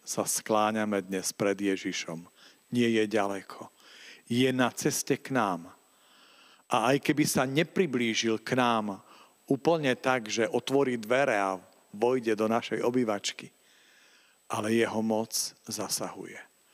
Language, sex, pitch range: Slovak, male, 100-135 Hz